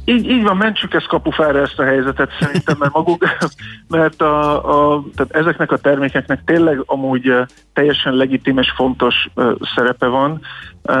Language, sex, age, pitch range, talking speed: Hungarian, male, 50-69, 125-145 Hz, 155 wpm